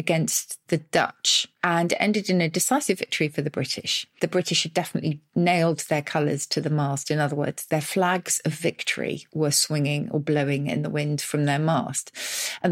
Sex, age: female, 40-59